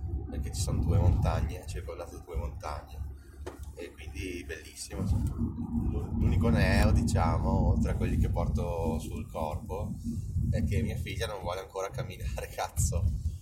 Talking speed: 140 wpm